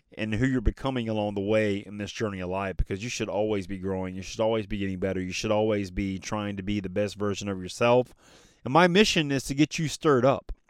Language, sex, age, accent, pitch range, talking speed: English, male, 30-49, American, 100-135 Hz, 250 wpm